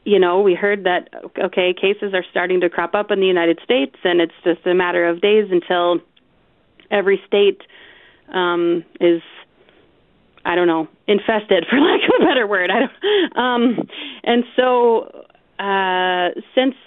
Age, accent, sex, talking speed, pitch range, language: 30-49, American, female, 155 wpm, 185-225 Hz, English